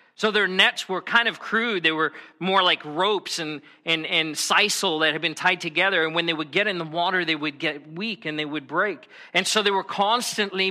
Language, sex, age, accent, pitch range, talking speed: English, male, 40-59, American, 160-215 Hz, 235 wpm